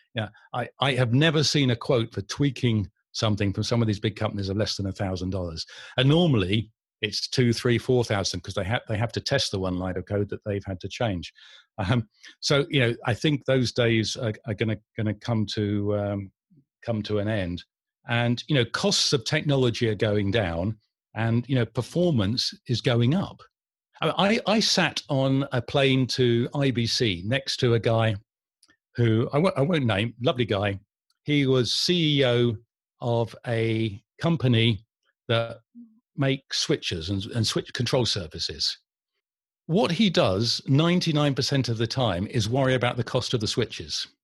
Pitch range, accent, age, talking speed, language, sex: 110-140 Hz, British, 50-69, 175 wpm, English, male